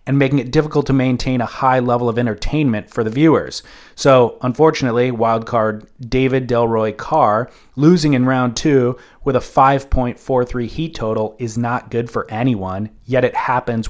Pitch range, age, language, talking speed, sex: 115-135 Hz, 30-49, English, 160 wpm, male